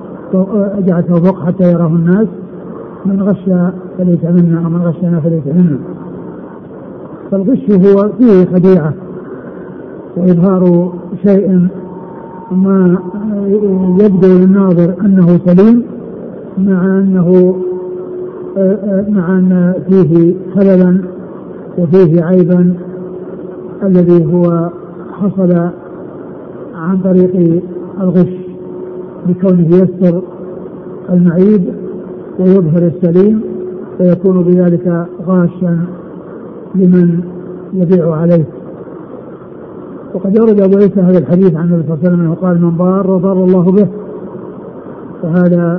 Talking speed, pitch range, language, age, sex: 90 wpm, 175-190 Hz, Arabic, 50-69, male